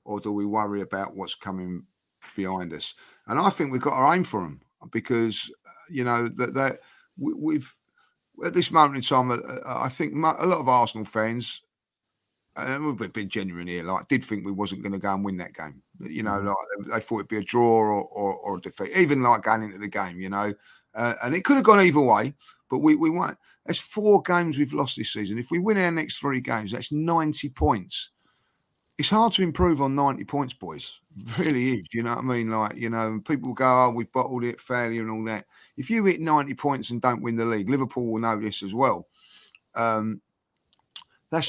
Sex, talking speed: male, 225 wpm